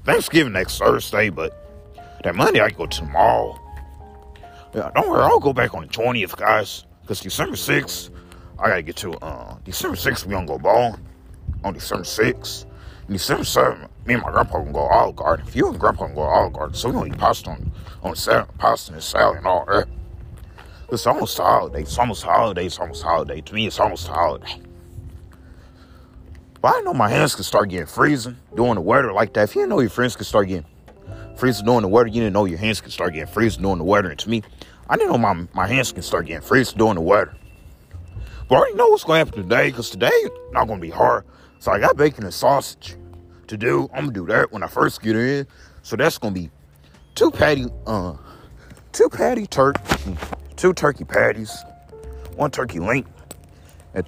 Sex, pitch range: male, 85-115 Hz